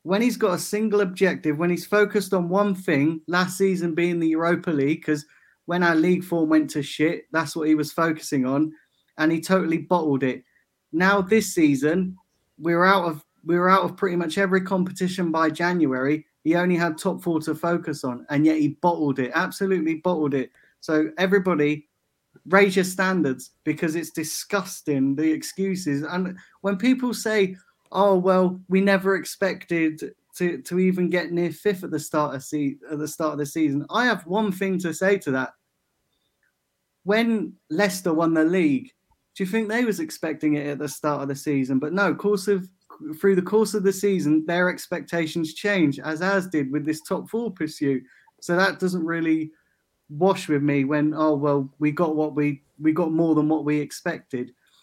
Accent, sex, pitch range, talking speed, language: British, male, 155-190 Hz, 190 wpm, English